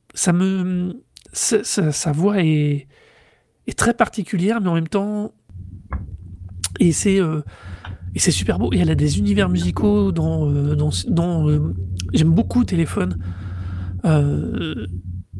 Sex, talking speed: male, 135 wpm